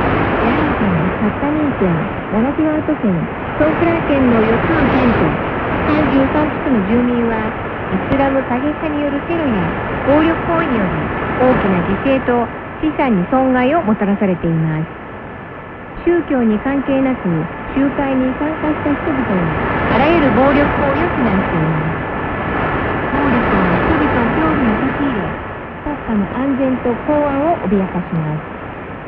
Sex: female